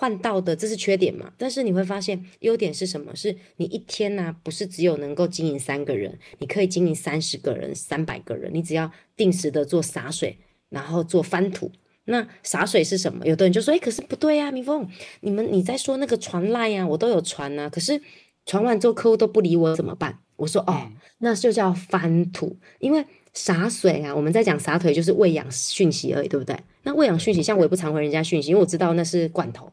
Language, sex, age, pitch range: Chinese, female, 20-39, 160-205 Hz